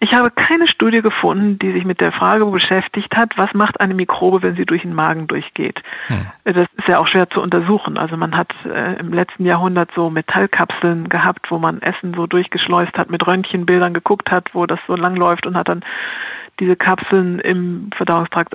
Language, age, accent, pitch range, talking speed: German, 50-69, German, 170-195 Hz, 195 wpm